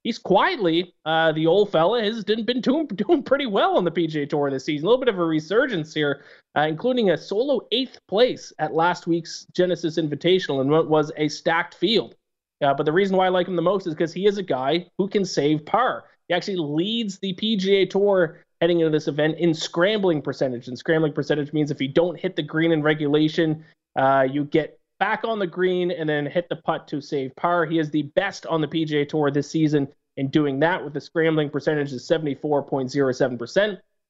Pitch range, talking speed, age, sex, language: 150-190 Hz, 215 wpm, 20-39, male, English